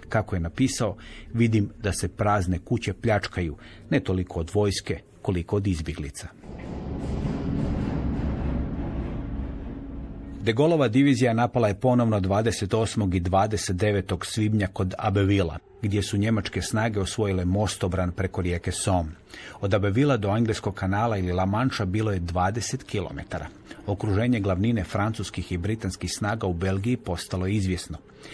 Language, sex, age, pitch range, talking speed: Croatian, male, 40-59, 95-115 Hz, 125 wpm